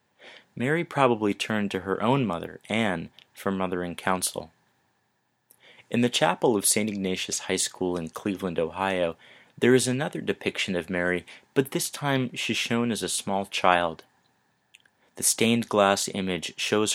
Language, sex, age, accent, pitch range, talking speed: English, male, 30-49, American, 85-105 Hz, 145 wpm